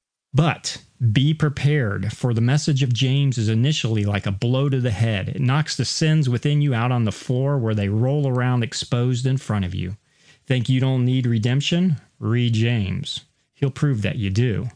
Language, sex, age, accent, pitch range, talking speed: English, male, 40-59, American, 110-140 Hz, 190 wpm